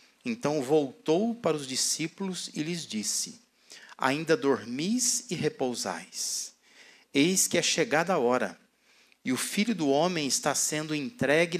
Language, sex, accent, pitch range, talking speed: Portuguese, male, Brazilian, 130-175 Hz, 135 wpm